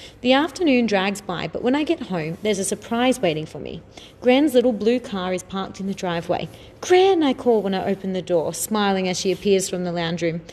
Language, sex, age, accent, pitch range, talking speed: English, female, 30-49, Australian, 180-255 Hz, 230 wpm